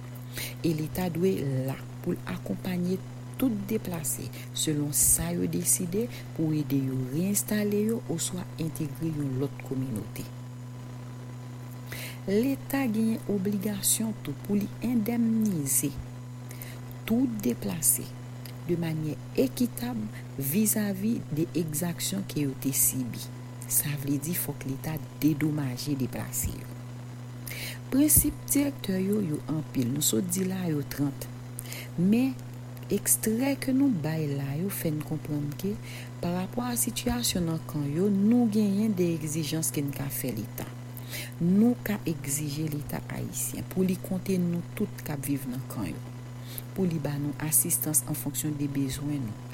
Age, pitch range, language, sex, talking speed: 60-79, 125-165 Hz, English, female, 135 wpm